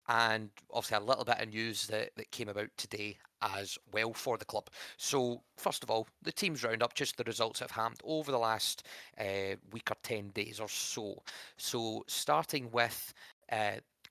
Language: English